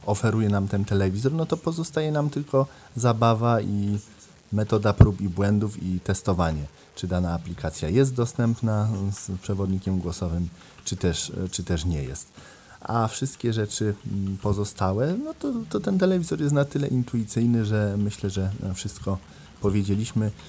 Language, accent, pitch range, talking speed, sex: Polish, native, 90-115 Hz, 140 wpm, male